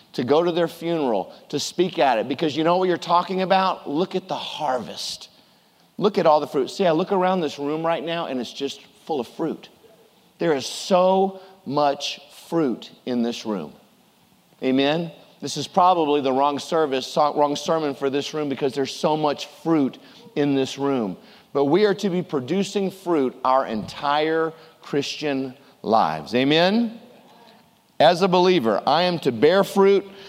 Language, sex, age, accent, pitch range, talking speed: English, male, 40-59, American, 140-180 Hz, 170 wpm